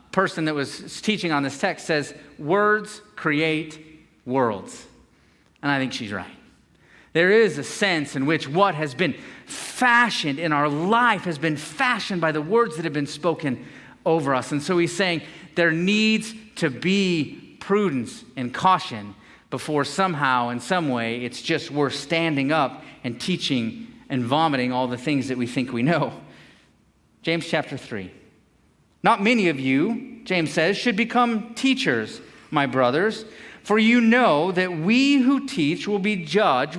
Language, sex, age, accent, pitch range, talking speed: English, male, 40-59, American, 145-220 Hz, 160 wpm